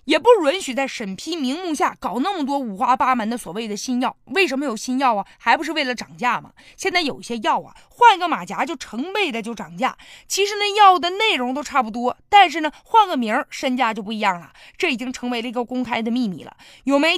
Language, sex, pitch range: Chinese, female, 235-335 Hz